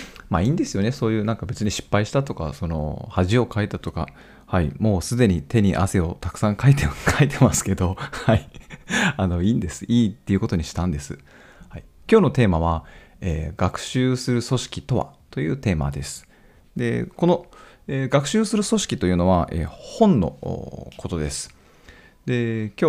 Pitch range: 85-120 Hz